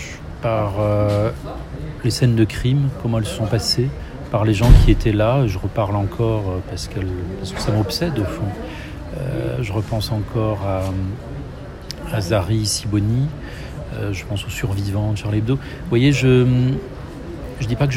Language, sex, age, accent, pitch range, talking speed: French, male, 40-59, French, 100-120 Hz, 165 wpm